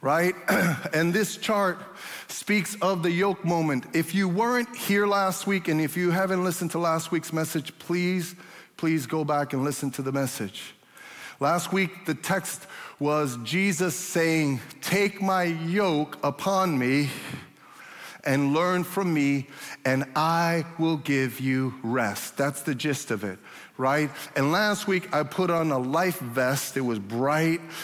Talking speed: 155 wpm